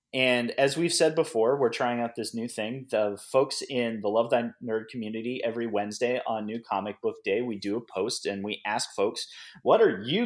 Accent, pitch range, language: American, 105-140 Hz, English